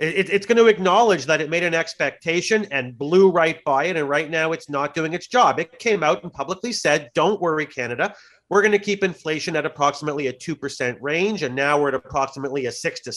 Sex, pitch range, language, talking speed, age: male, 155-195 Hz, English, 230 wpm, 40-59